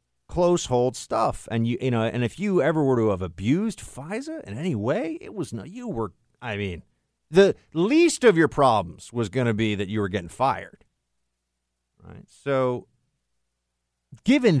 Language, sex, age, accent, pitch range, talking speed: English, male, 50-69, American, 90-130 Hz, 175 wpm